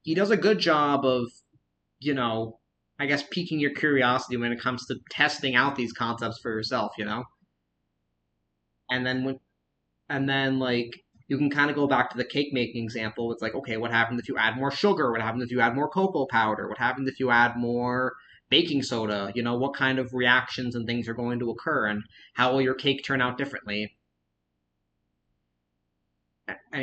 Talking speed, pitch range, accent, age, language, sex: 195 wpm, 110-135 Hz, American, 30-49, English, male